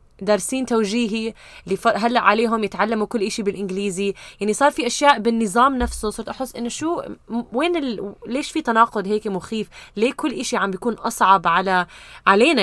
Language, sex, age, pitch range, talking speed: Arabic, female, 20-39, 195-235 Hz, 150 wpm